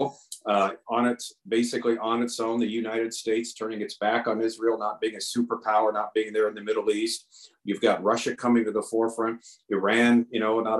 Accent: American